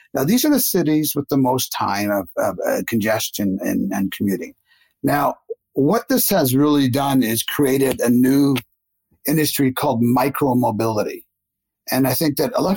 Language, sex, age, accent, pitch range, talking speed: English, male, 50-69, American, 110-145 Hz, 165 wpm